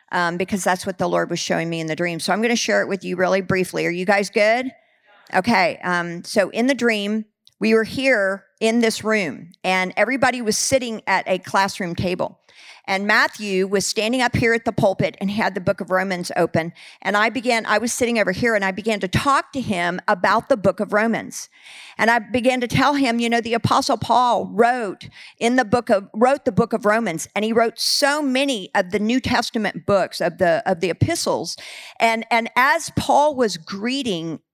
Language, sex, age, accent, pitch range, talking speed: English, female, 50-69, American, 195-255 Hz, 215 wpm